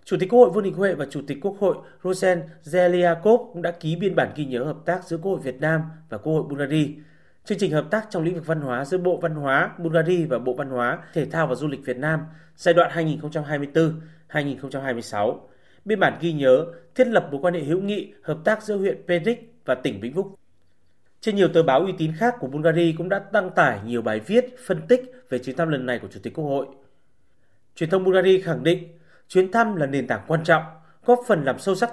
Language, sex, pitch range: Vietnamese, male, 145-185 Hz